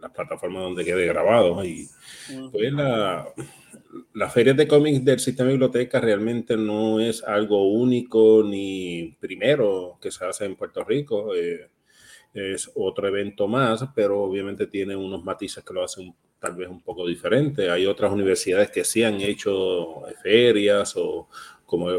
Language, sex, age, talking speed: Spanish, male, 30-49, 155 wpm